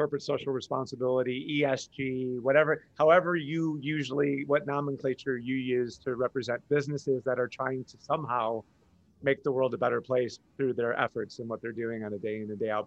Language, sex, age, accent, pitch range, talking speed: English, male, 30-49, American, 120-145 Hz, 185 wpm